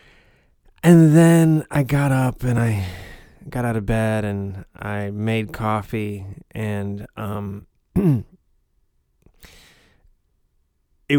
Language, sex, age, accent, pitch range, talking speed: English, male, 30-49, American, 95-115 Hz, 95 wpm